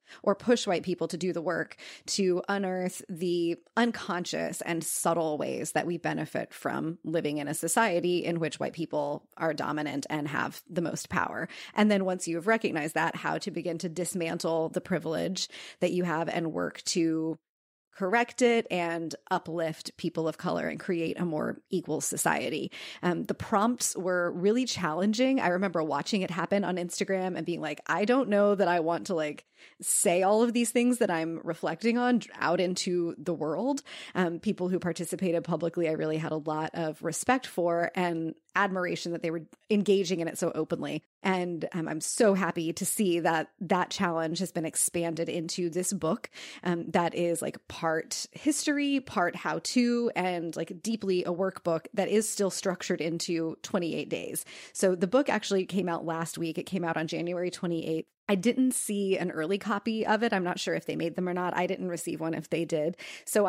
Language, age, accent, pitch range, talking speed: English, 30-49, American, 165-200 Hz, 190 wpm